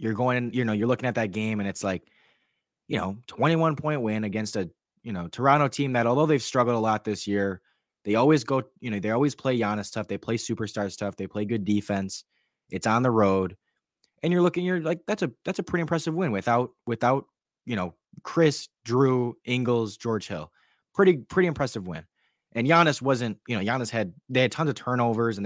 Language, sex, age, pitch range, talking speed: English, male, 20-39, 100-125 Hz, 215 wpm